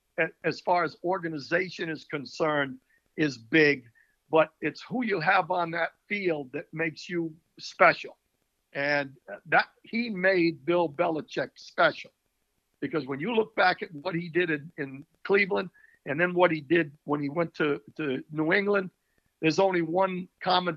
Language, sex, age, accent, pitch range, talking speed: English, male, 60-79, American, 150-180 Hz, 160 wpm